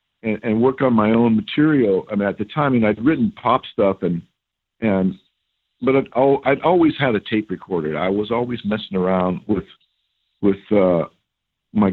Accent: American